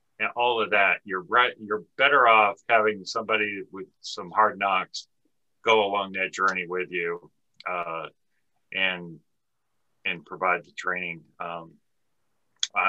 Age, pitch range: 40-59, 95-115 Hz